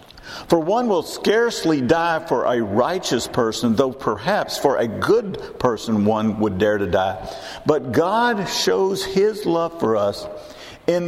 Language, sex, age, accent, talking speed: English, male, 50-69, American, 150 wpm